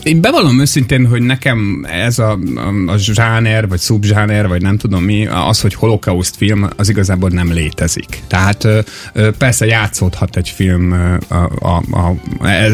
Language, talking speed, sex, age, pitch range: Hungarian, 145 wpm, male, 30-49, 95-120 Hz